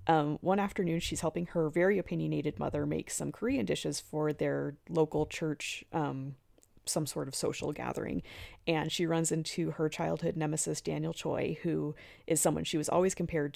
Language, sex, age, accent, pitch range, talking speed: English, female, 30-49, American, 150-170 Hz, 175 wpm